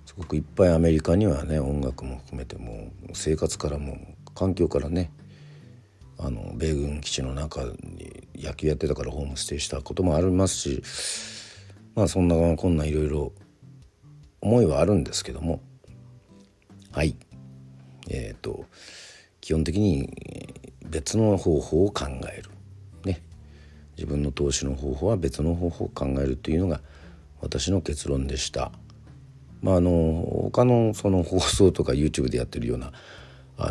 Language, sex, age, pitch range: Japanese, male, 50-69, 75-100 Hz